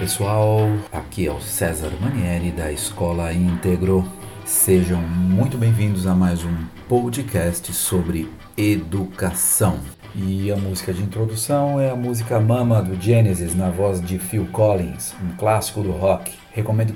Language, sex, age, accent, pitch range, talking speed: Portuguese, male, 50-69, Brazilian, 85-105 Hz, 140 wpm